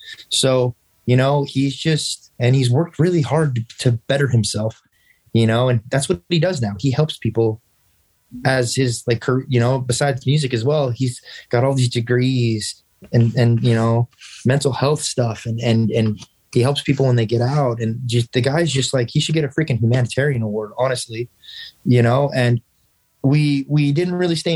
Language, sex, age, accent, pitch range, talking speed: English, male, 20-39, American, 115-140 Hz, 190 wpm